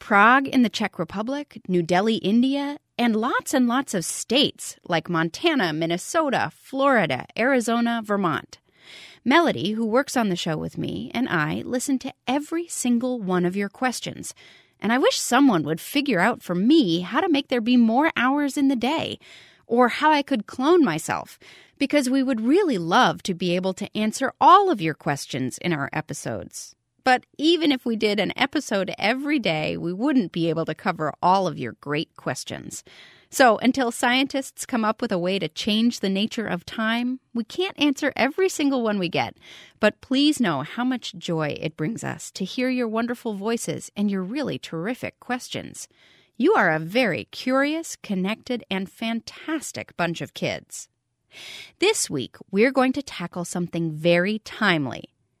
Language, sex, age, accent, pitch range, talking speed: English, female, 30-49, American, 180-265 Hz, 175 wpm